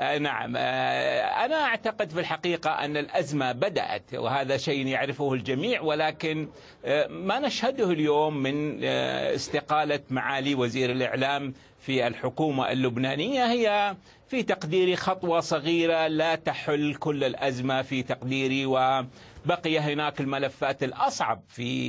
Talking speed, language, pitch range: 110 wpm, Arabic, 135-170 Hz